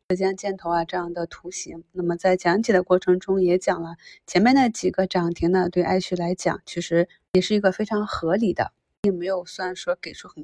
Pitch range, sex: 175-205 Hz, female